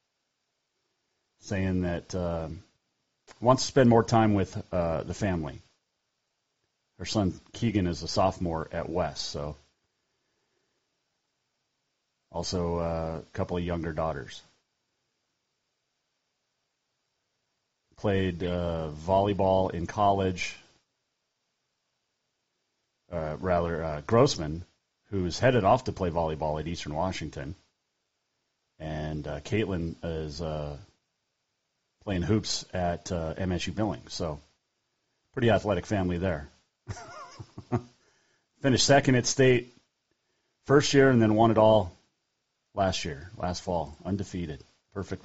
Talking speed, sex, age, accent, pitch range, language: 105 wpm, male, 40-59, American, 85-105 Hz, English